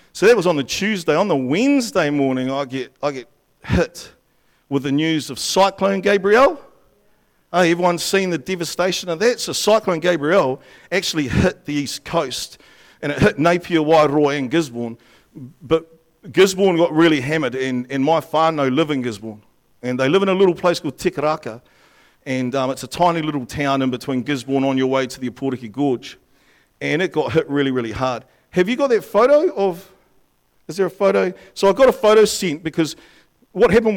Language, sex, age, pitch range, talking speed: English, male, 50-69, 135-190 Hz, 190 wpm